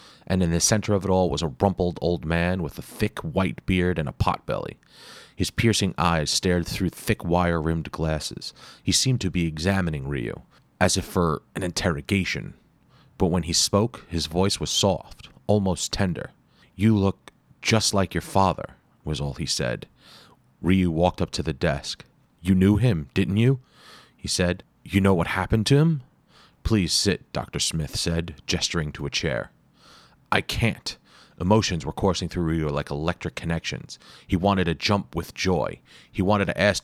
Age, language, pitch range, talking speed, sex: 30-49, English, 85-100 Hz, 175 wpm, male